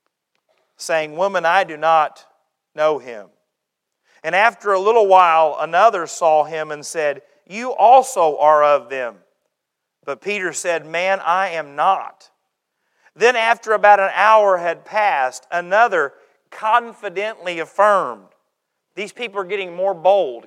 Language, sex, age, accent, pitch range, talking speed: English, male, 40-59, American, 160-230 Hz, 130 wpm